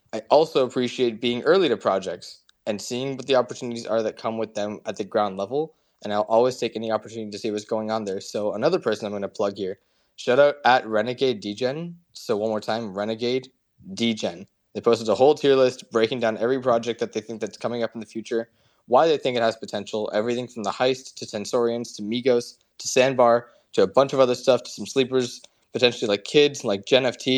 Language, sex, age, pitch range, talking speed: English, male, 20-39, 110-125 Hz, 220 wpm